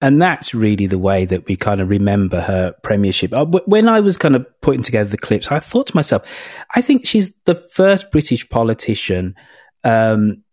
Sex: male